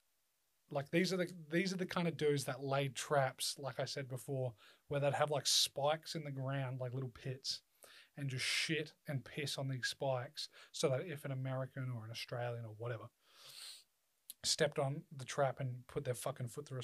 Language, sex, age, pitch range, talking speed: English, male, 30-49, 130-160 Hz, 200 wpm